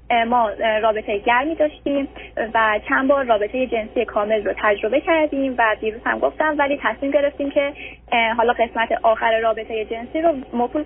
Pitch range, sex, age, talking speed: 225-285 Hz, female, 30-49, 155 wpm